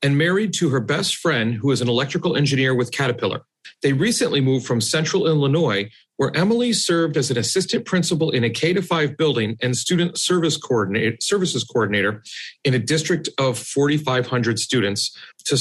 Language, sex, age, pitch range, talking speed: English, male, 40-59, 120-165 Hz, 165 wpm